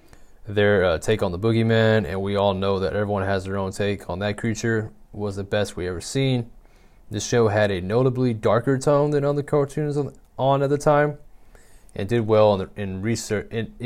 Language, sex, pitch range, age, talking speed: English, male, 100-115 Hz, 20-39, 205 wpm